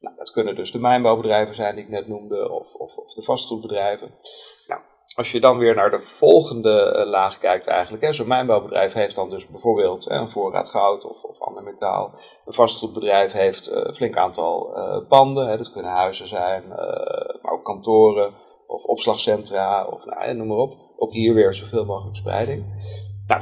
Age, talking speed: 40-59, 185 wpm